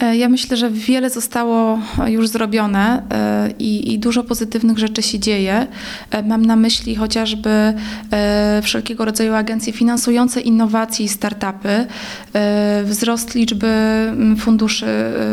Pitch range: 215-240 Hz